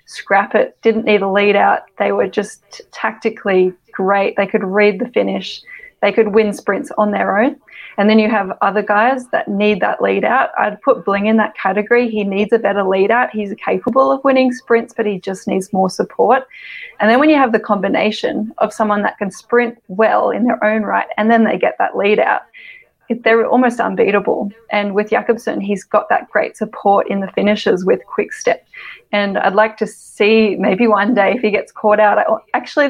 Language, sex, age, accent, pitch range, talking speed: English, female, 20-39, Australian, 205-240 Hz, 205 wpm